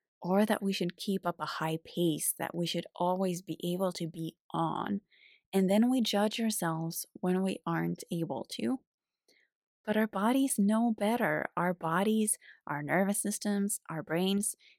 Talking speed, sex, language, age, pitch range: 160 wpm, female, English, 20-39, 170-215 Hz